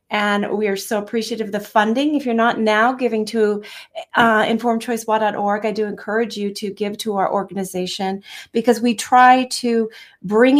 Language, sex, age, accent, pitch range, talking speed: English, female, 30-49, American, 200-235 Hz, 170 wpm